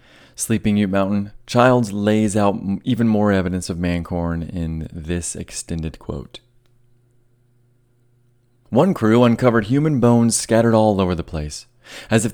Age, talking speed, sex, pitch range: 30-49, 130 wpm, male, 95-120 Hz